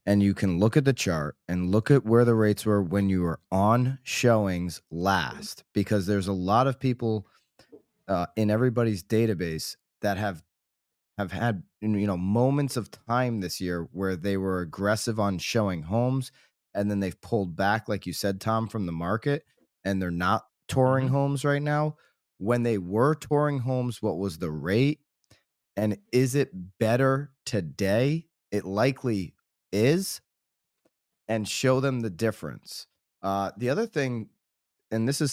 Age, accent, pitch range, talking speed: 20-39, American, 95-115 Hz, 165 wpm